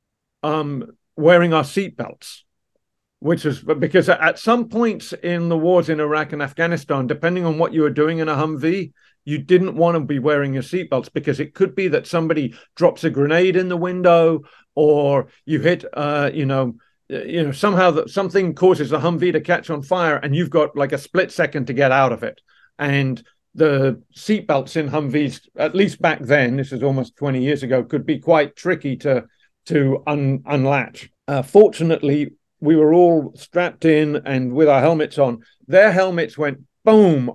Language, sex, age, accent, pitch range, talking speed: English, male, 50-69, British, 140-170 Hz, 185 wpm